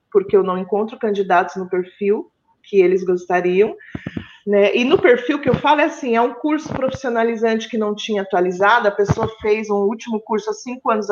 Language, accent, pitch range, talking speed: Portuguese, Brazilian, 210-290 Hz, 195 wpm